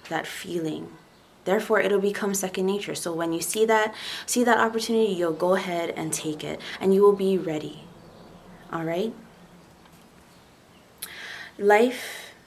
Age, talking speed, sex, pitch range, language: 20-39, 140 wpm, female, 170-210 Hz, English